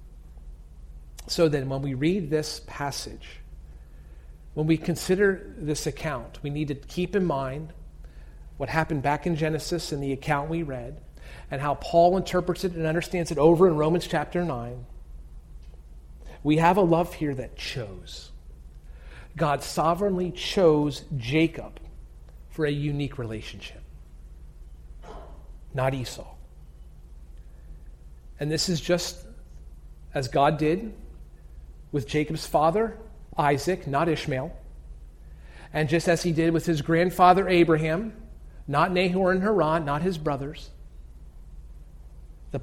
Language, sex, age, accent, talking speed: English, male, 40-59, American, 125 wpm